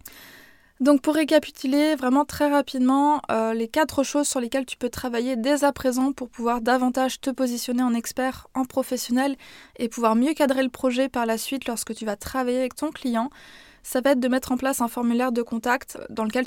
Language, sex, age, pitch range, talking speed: French, female, 20-39, 235-265 Hz, 205 wpm